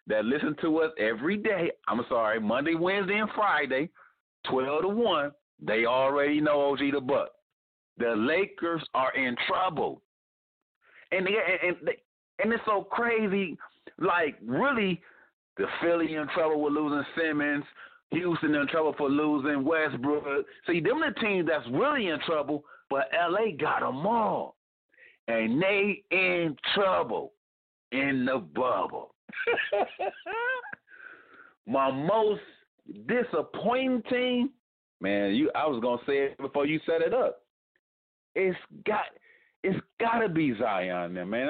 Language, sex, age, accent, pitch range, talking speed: English, male, 40-59, American, 140-220 Hz, 135 wpm